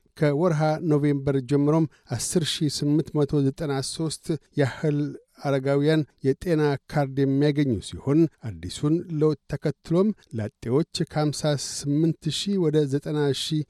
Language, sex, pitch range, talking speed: Amharic, male, 135-155 Hz, 60 wpm